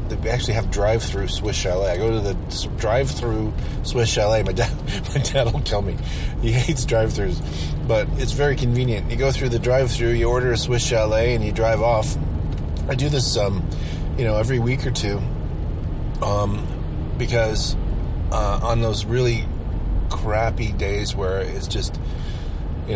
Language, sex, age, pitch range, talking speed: English, male, 30-49, 85-120 Hz, 165 wpm